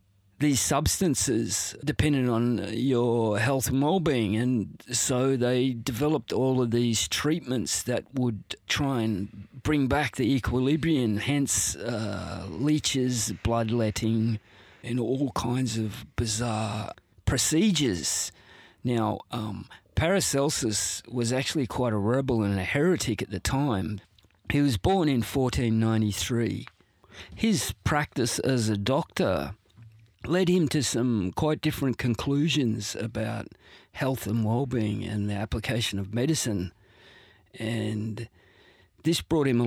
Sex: male